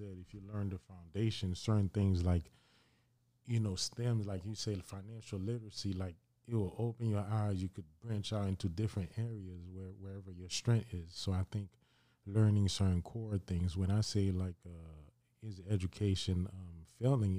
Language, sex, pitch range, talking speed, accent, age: English, male, 90-110 Hz, 175 wpm, American, 20-39